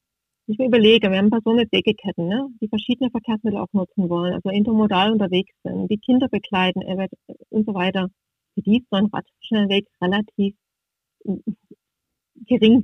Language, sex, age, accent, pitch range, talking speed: German, female, 30-49, German, 190-220 Hz, 150 wpm